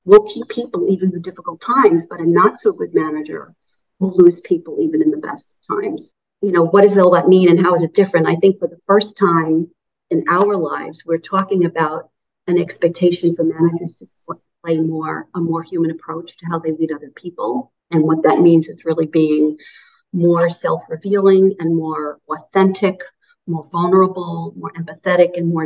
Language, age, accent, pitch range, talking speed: English, 50-69, American, 165-205 Hz, 190 wpm